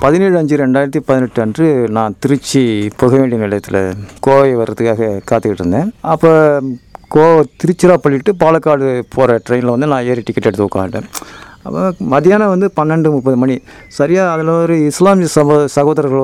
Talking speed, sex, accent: 135 wpm, male, native